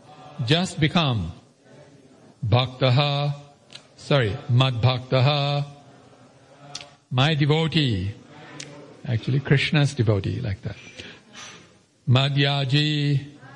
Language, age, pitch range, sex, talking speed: English, 60-79, 135-150 Hz, male, 60 wpm